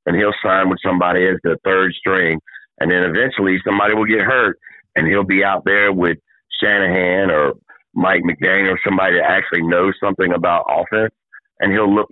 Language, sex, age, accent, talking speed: English, male, 50-69, American, 185 wpm